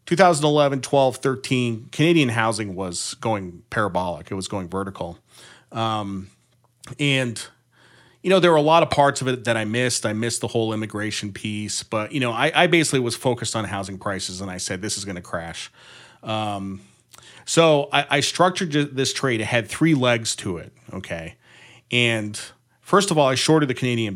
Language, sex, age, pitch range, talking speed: English, male, 30-49, 105-140 Hz, 180 wpm